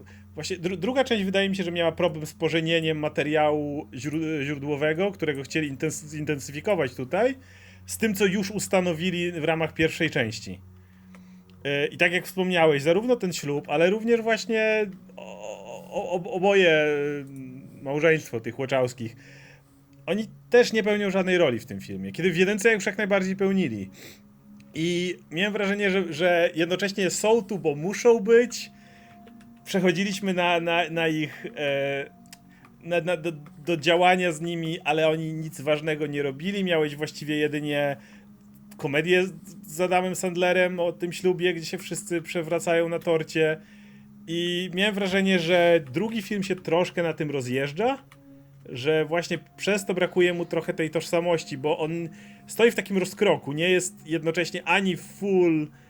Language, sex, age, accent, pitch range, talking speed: Polish, male, 30-49, native, 150-185 Hz, 145 wpm